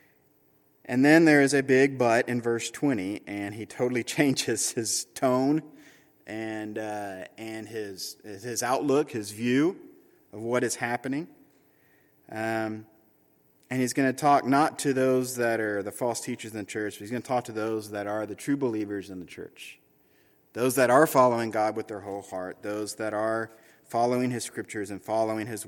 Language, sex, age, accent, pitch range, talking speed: English, male, 30-49, American, 105-125 Hz, 180 wpm